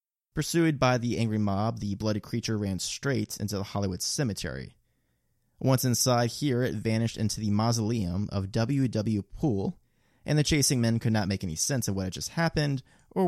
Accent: American